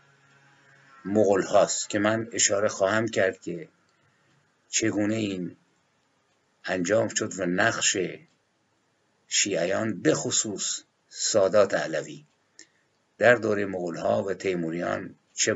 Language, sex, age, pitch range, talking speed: Persian, male, 50-69, 95-125 Hz, 95 wpm